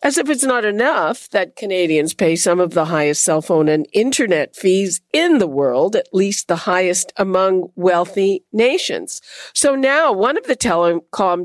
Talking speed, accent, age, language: 175 wpm, American, 50-69, English